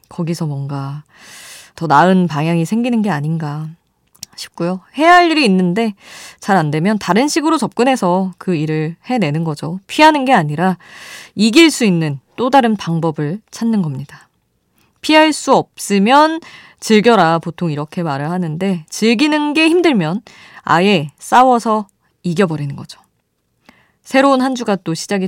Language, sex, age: Korean, female, 20-39